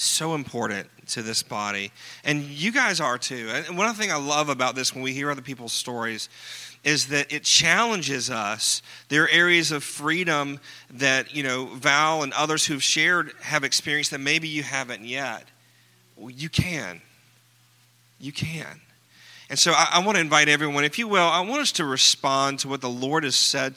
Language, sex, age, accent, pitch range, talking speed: English, male, 40-59, American, 120-150 Hz, 190 wpm